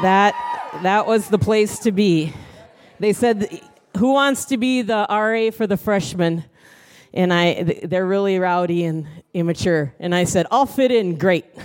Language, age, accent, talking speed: English, 40-59, American, 165 wpm